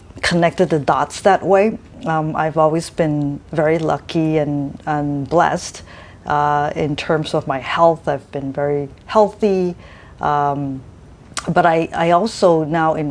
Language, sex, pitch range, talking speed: English, female, 140-165 Hz, 140 wpm